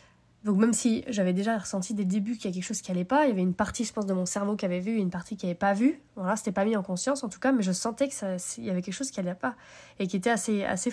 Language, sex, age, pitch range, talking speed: French, female, 20-39, 190-245 Hz, 340 wpm